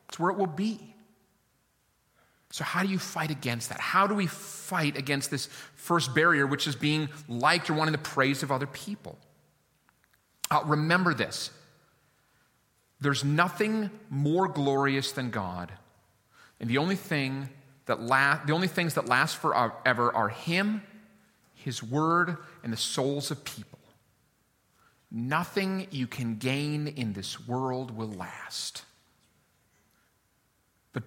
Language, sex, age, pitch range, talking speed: English, male, 40-59, 115-160 Hz, 130 wpm